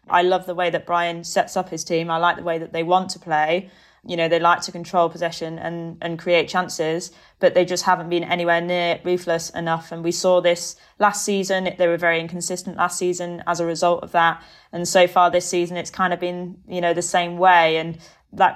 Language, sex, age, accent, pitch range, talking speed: English, female, 20-39, British, 170-185 Hz, 235 wpm